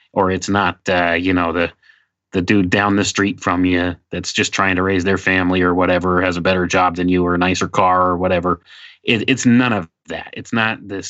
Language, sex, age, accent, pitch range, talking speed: English, male, 30-49, American, 90-105 Hz, 230 wpm